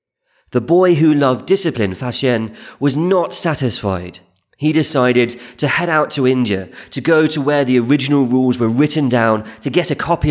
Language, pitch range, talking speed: English, 110-145 Hz, 175 wpm